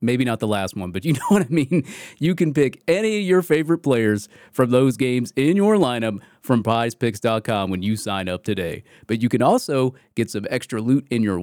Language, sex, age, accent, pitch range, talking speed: English, male, 30-49, American, 105-155 Hz, 220 wpm